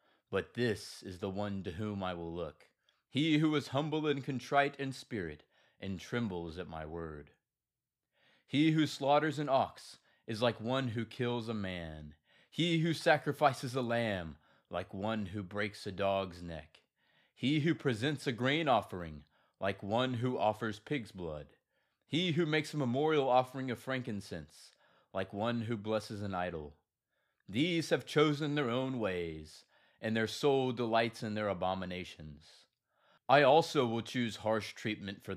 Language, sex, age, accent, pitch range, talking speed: English, male, 30-49, American, 95-135 Hz, 160 wpm